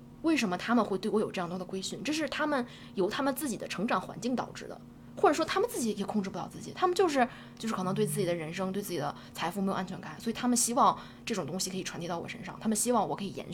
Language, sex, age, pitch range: Chinese, female, 20-39, 185-250 Hz